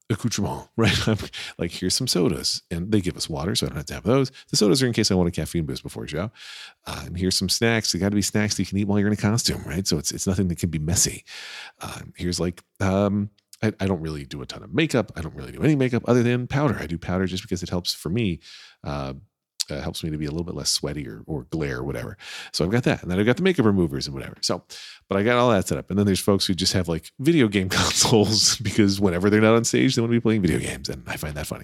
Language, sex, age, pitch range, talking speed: English, male, 40-59, 85-110 Hz, 290 wpm